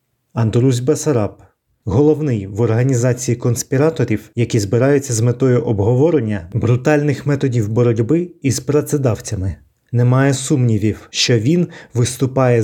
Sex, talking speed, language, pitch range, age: male, 105 wpm, Ukrainian, 115-140 Hz, 30-49